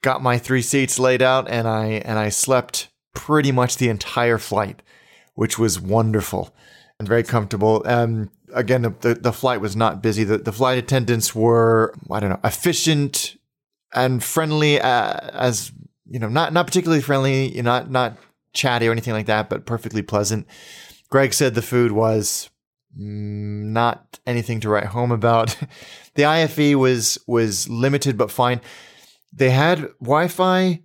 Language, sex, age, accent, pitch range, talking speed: English, male, 30-49, American, 110-130 Hz, 160 wpm